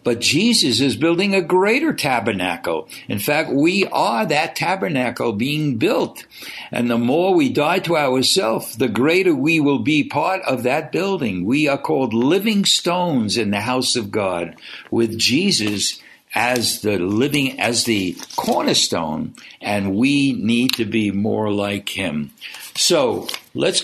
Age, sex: 60-79, male